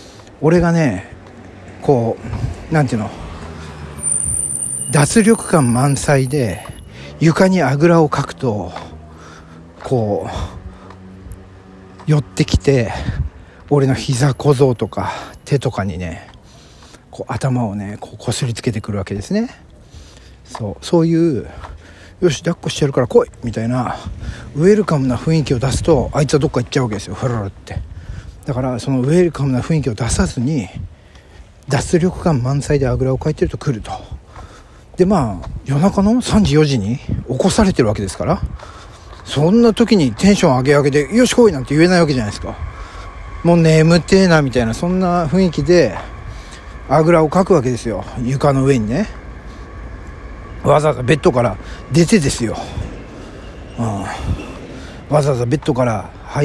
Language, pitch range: Japanese, 100-155 Hz